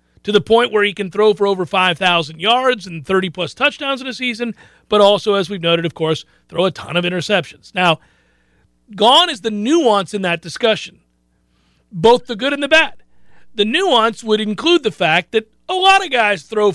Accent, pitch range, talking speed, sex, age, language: American, 180-250 Hz, 195 wpm, male, 40-59, English